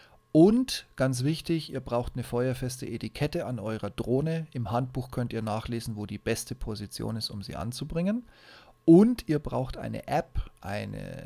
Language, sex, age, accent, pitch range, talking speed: German, male, 30-49, German, 115-135 Hz, 160 wpm